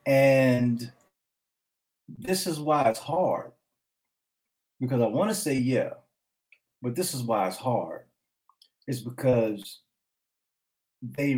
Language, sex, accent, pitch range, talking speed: English, male, American, 120-160 Hz, 110 wpm